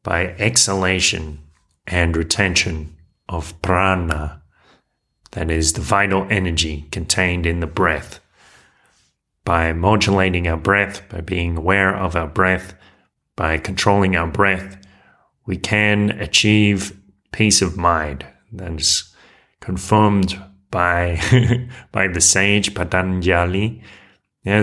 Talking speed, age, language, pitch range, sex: 105 wpm, 30-49, English, 85-100 Hz, male